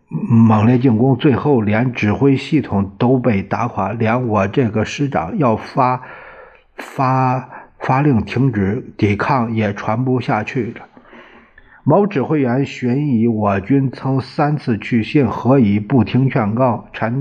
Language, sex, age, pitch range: Chinese, male, 50-69, 105-130 Hz